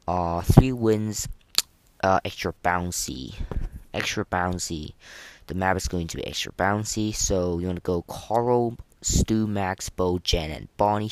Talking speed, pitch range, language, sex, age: 150 wpm, 90-110 Hz, English, female, 20-39